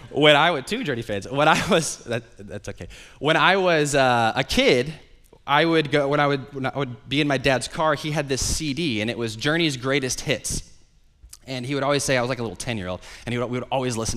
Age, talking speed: 20-39, 255 wpm